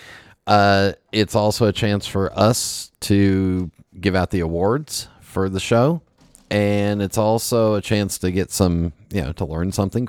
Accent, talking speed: American, 165 wpm